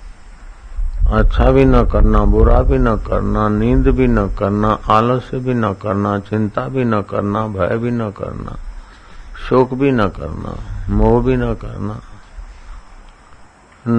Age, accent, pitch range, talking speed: 50-69, native, 95-125 Hz, 135 wpm